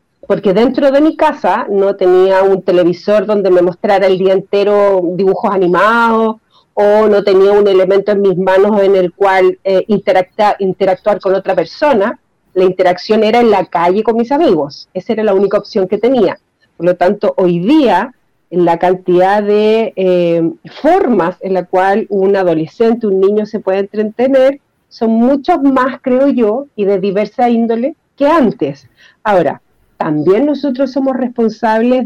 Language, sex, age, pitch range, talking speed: Spanish, female, 40-59, 190-240 Hz, 160 wpm